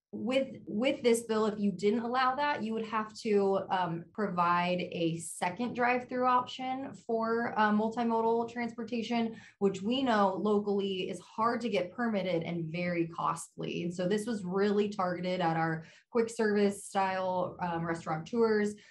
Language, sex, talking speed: English, female, 155 wpm